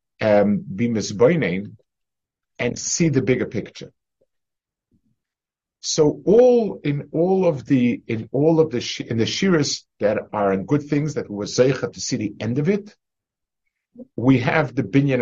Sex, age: male, 50-69